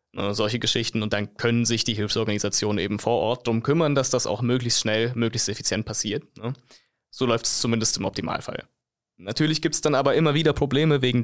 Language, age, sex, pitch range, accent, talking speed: German, 20-39, male, 110-135 Hz, German, 190 wpm